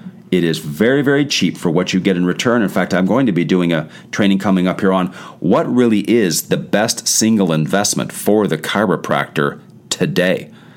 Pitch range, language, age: 90-140 Hz, English, 40-59